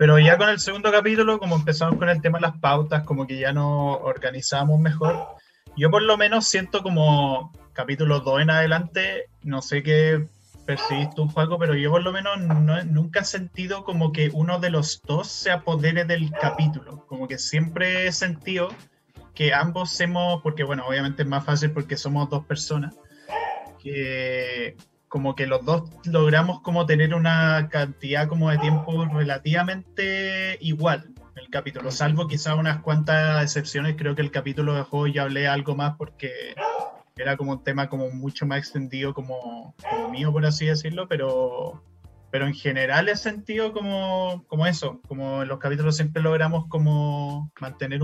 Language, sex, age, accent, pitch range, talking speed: Spanish, male, 20-39, Argentinian, 140-165 Hz, 175 wpm